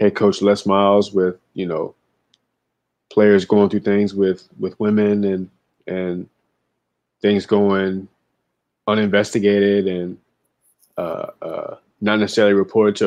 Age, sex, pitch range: 20-39, male, 95-105 Hz